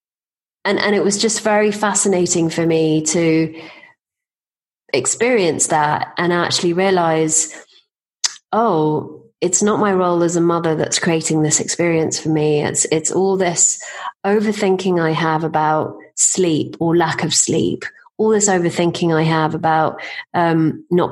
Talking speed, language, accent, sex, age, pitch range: 140 wpm, English, British, female, 30-49, 160-195 Hz